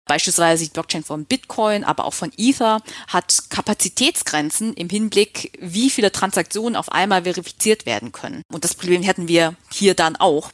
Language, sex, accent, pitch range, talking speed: German, female, German, 170-225 Hz, 165 wpm